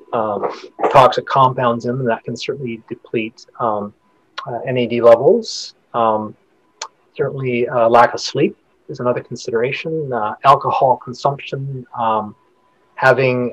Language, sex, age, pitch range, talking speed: English, male, 30-49, 115-135 Hz, 120 wpm